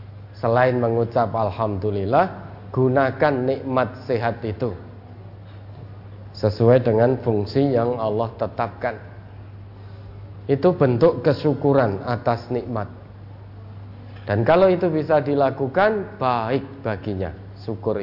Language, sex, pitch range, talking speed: Indonesian, male, 100-130 Hz, 85 wpm